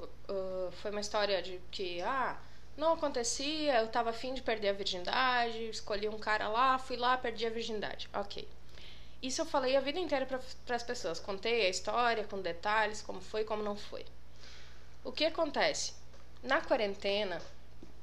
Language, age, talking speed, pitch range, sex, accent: Portuguese, 20-39, 165 wpm, 170-235 Hz, female, Brazilian